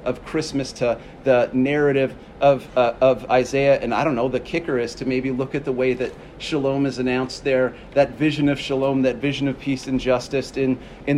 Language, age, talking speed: English, 40-59, 210 wpm